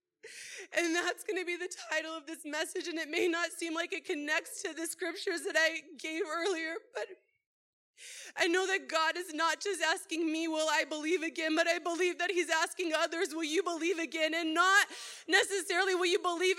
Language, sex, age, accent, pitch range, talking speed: English, female, 20-39, American, 325-395 Hz, 205 wpm